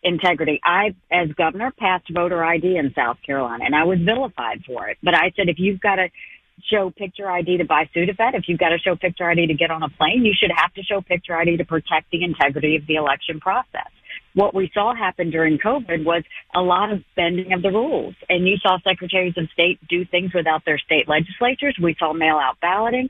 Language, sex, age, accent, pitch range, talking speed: English, female, 50-69, American, 160-190 Hz, 230 wpm